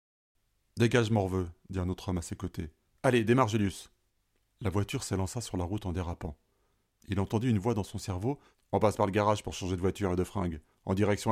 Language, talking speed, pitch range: French, 245 wpm, 95-115 Hz